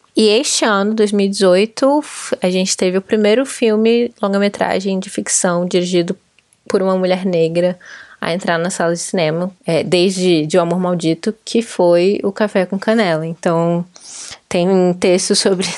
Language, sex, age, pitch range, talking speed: Portuguese, female, 20-39, 170-200 Hz, 155 wpm